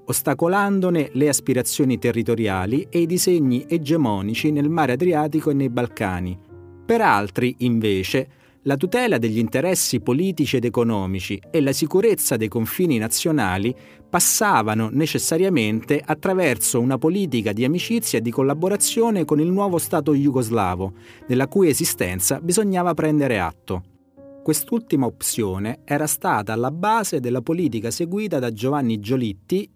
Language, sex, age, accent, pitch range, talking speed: Italian, male, 30-49, native, 115-165 Hz, 125 wpm